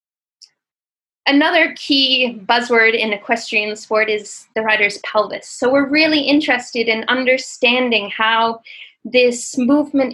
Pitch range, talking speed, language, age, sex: 230-275 Hz, 110 wpm, English, 10-29, female